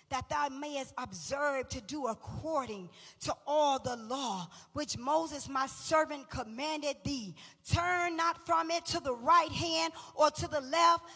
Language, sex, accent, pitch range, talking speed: English, female, American, 315-410 Hz, 155 wpm